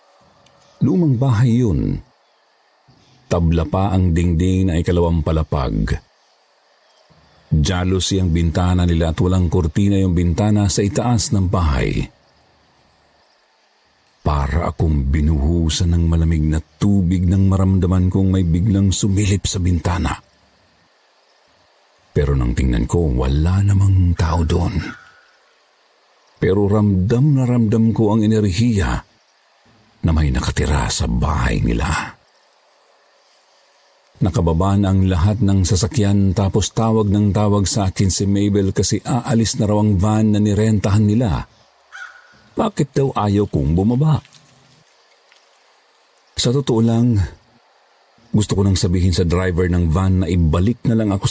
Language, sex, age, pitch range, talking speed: Filipino, male, 50-69, 85-110 Hz, 120 wpm